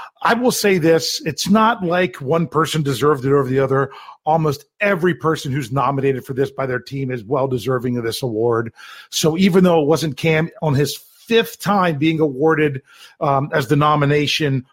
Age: 40-59